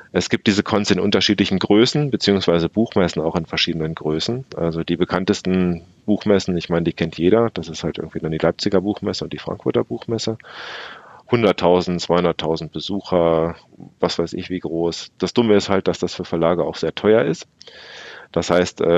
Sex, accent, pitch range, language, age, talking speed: male, German, 80-100 Hz, German, 40-59, 175 wpm